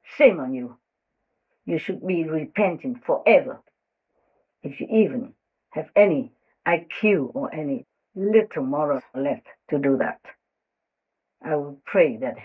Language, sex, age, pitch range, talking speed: English, female, 60-79, 150-255 Hz, 125 wpm